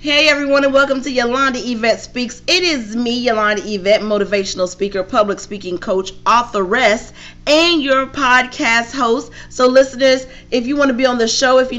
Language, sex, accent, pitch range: English, female, American, 200-255 Hz